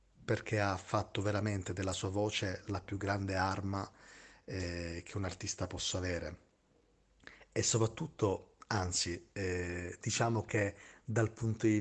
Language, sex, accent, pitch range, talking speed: Italian, male, native, 90-105 Hz, 130 wpm